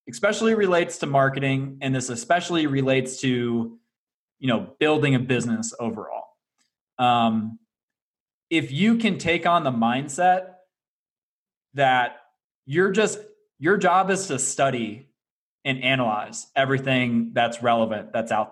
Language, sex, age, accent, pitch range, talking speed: English, male, 20-39, American, 120-155 Hz, 125 wpm